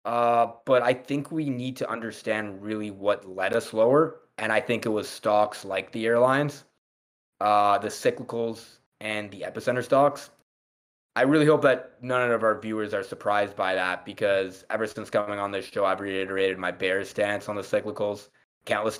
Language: English